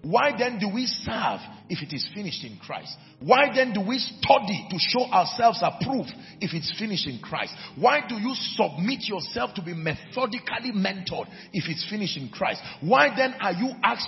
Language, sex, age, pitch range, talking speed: English, male, 40-59, 180-250 Hz, 190 wpm